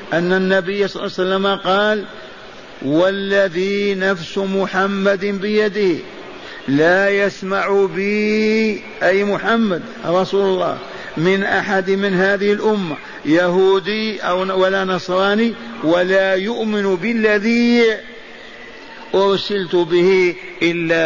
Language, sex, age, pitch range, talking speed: Arabic, male, 50-69, 180-200 Hz, 95 wpm